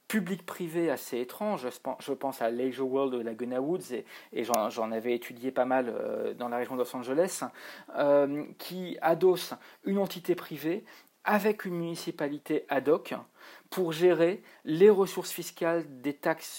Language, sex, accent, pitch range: French, male, French, 140-180 Hz